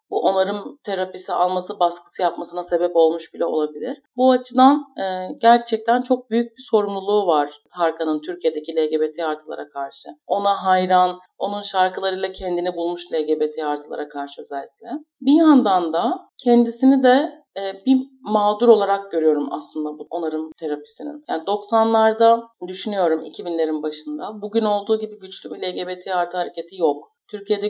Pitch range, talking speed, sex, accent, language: 170-235 Hz, 130 wpm, female, native, Turkish